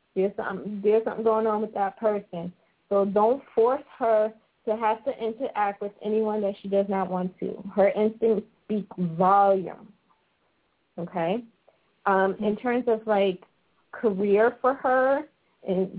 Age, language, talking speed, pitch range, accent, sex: 20-39, English, 145 wpm, 195-220 Hz, American, female